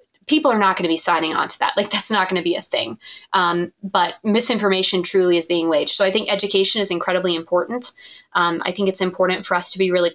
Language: English